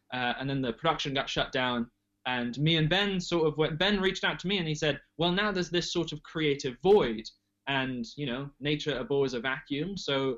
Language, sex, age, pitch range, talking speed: English, male, 20-39, 130-180 Hz, 225 wpm